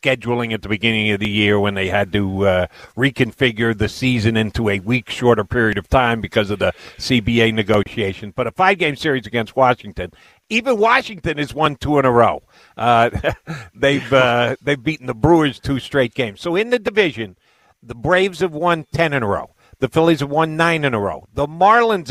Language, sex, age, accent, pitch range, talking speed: English, male, 50-69, American, 110-155 Hz, 200 wpm